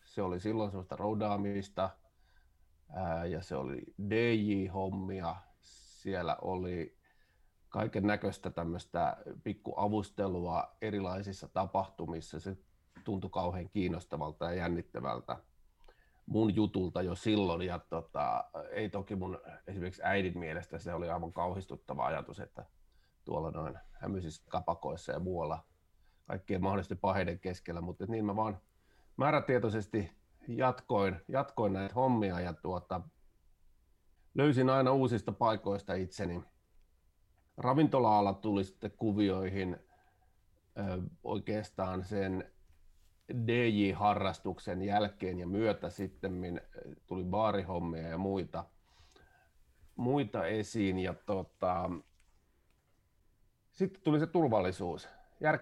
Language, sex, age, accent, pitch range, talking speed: Finnish, male, 30-49, native, 85-105 Hz, 95 wpm